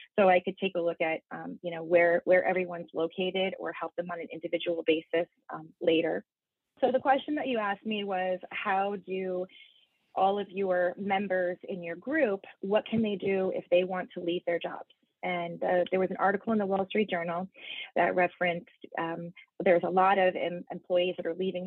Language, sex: English, female